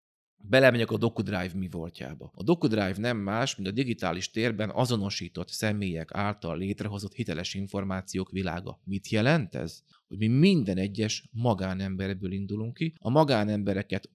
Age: 30-49